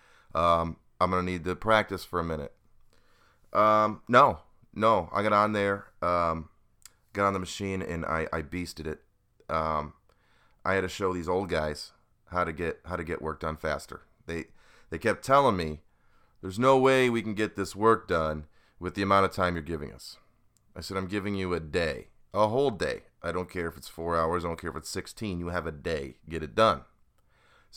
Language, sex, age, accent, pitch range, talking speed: English, male, 30-49, American, 85-105 Hz, 210 wpm